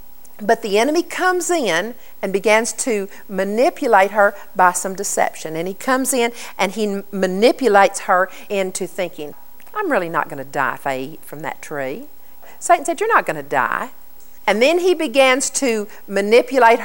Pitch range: 190-240 Hz